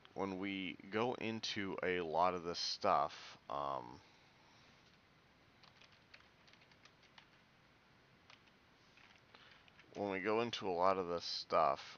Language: English